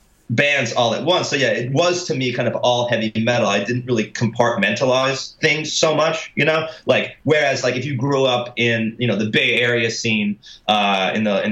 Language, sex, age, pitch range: English, male, 30-49, 115-125 Hz